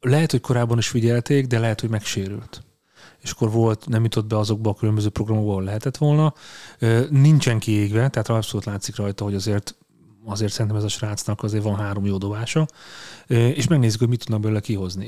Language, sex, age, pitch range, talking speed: Hungarian, male, 30-49, 105-125 Hz, 185 wpm